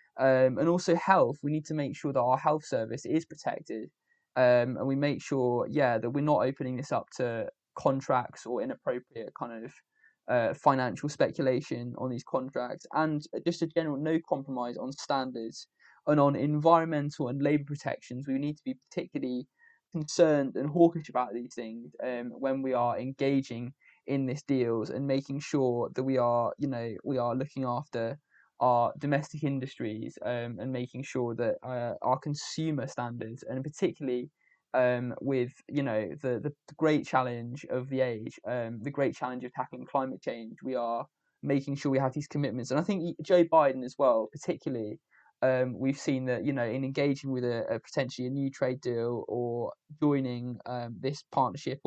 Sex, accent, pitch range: male, British, 125-145 Hz